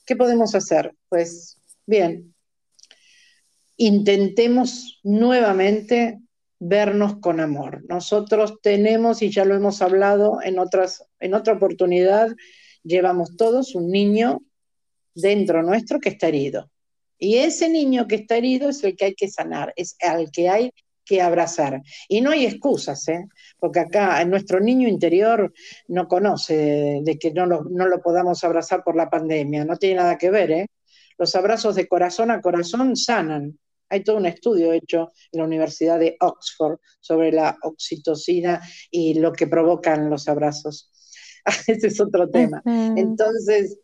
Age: 50-69